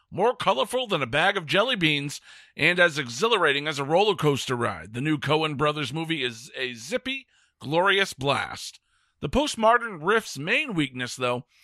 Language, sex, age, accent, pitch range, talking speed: English, male, 50-69, American, 140-195 Hz, 165 wpm